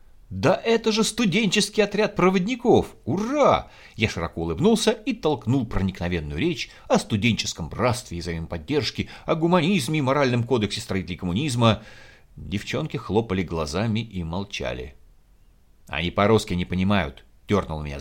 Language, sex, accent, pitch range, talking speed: Russian, male, native, 85-125 Hz, 125 wpm